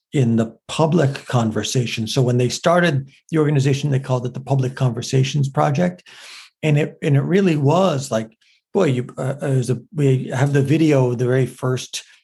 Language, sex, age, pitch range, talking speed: English, male, 50-69, 130-160 Hz, 170 wpm